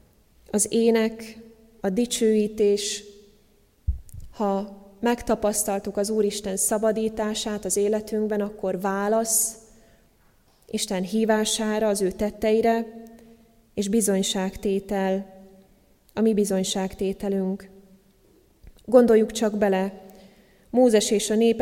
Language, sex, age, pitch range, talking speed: Hungarian, female, 20-39, 200-225 Hz, 85 wpm